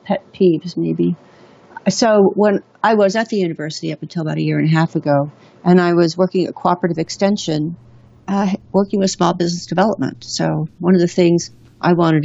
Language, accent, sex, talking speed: English, American, female, 195 wpm